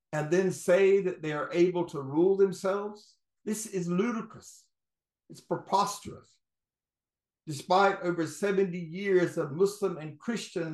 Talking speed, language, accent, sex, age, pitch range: 130 wpm, English, American, male, 60-79, 155-190 Hz